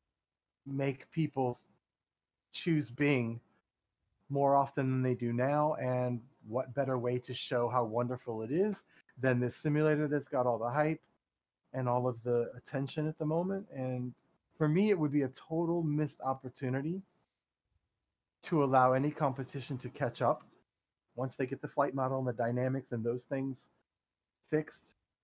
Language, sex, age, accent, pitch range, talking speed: English, male, 30-49, American, 125-150 Hz, 155 wpm